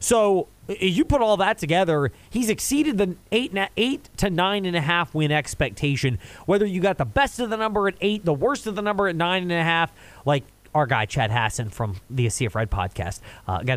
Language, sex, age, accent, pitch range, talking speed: English, male, 30-49, American, 120-195 Hz, 220 wpm